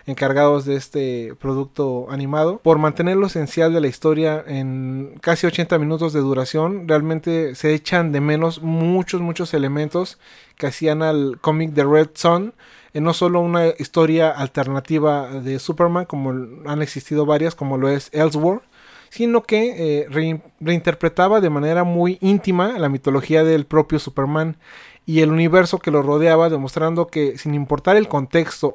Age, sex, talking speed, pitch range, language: 30-49, male, 155 wpm, 145-170 Hz, Spanish